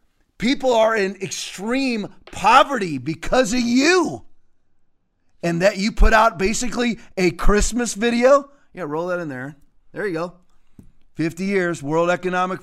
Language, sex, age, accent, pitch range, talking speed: English, male, 30-49, American, 155-215 Hz, 140 wpm